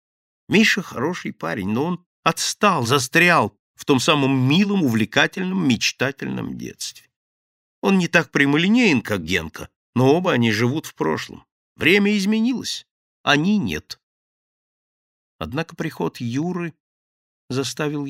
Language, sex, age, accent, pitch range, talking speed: Russian, male, 50-69, native, 110-160 Hz, 115 wpm